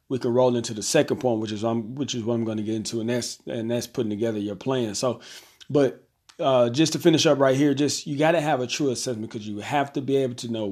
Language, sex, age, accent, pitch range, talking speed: English, male, 40-59, American, 115-140 Hz, 280 wpm